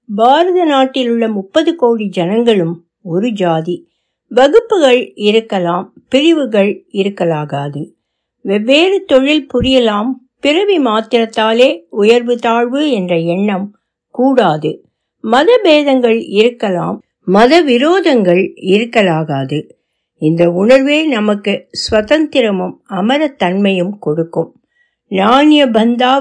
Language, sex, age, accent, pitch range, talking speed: Tamil, female, 60-79, native, 185-265 Hz, 75 wpm